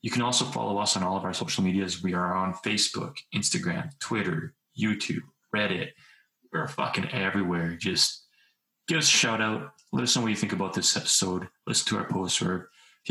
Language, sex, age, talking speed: English, male, 20-39, 200 wpm